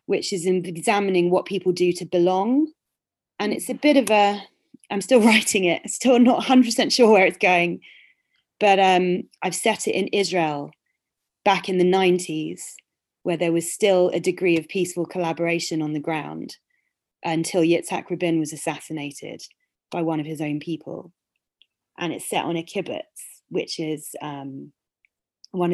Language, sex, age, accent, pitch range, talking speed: English, female, 30-49, British, 155-190 Hz, 165 wpm